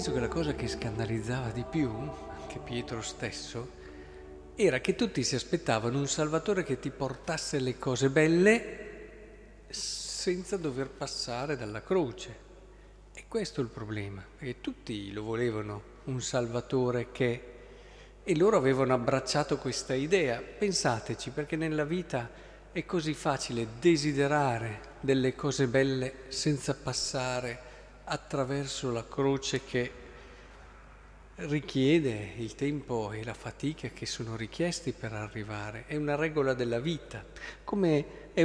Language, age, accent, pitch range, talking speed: Italian, 50-69, native, 120-155 Hz, 130 wpm